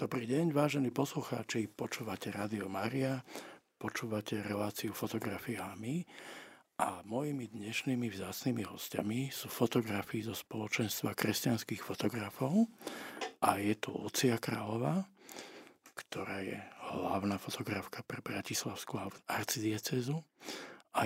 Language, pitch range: Slovak, 110-135 Hz